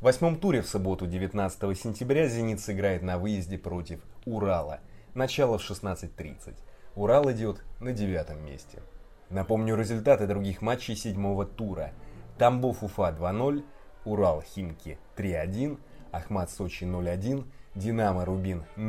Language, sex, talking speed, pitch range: Russian, male, 120 wpm, 90-120 Hz